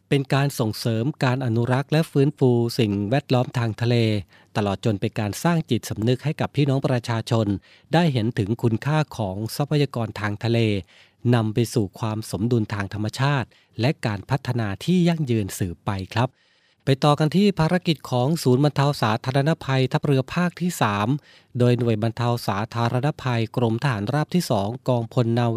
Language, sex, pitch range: Thai, male, 110-140 Hz